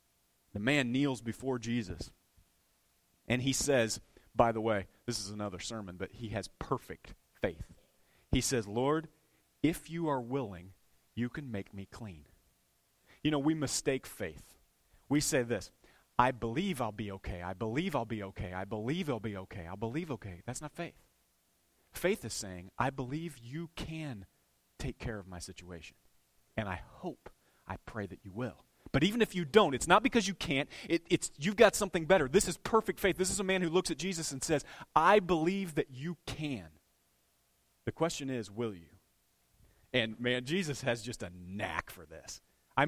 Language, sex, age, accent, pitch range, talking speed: English, male, 30-49, American, 100-160 Hz, 185 wpm